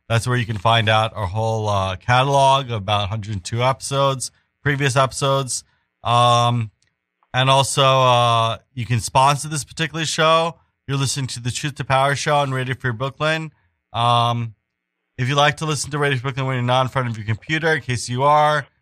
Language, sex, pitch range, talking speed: English, male, 120-140 Hz, 190 wpm